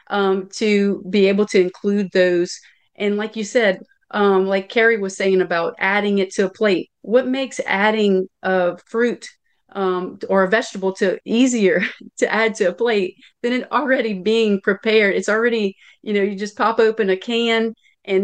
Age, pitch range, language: 40-59, 190-225 Hz, English